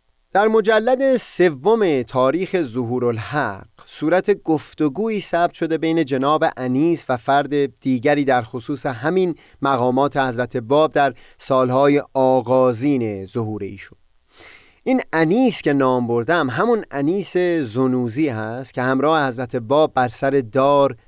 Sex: male